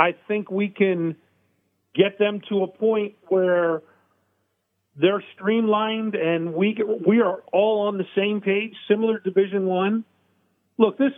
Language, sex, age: English, male, 40-59